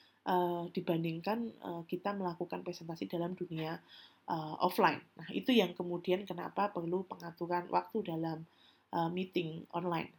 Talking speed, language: 130 wpm, Indonesian